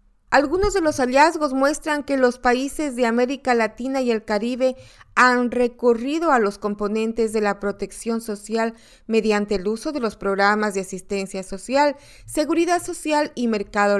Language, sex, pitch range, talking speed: Spanish, female, 195-255 Hz, 155 wpm